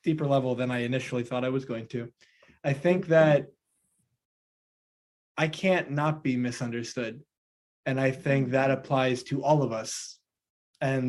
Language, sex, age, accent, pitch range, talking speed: English, male, 20-39, American, 125-150 Hz, 150 wpm